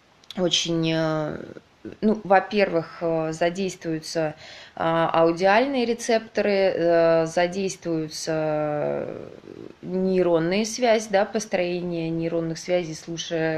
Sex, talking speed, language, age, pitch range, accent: female, 60 wpm, Russian, 20-39, 165-195 Hz, native